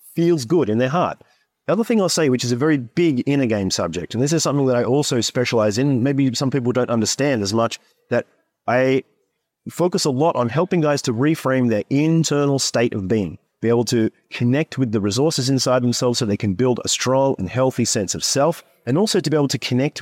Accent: Australian